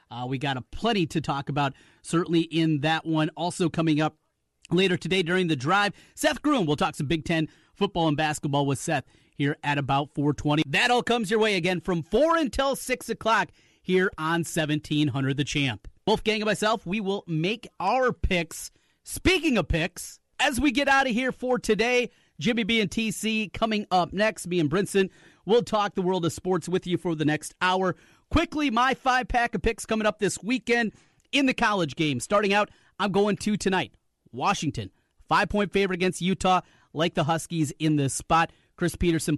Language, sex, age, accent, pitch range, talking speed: English, male, 30-49, American, 150-210 Hz, 195 wpm